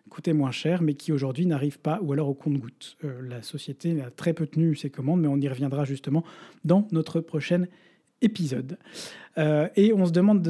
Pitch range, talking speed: 145-175 Hz, 205 wpm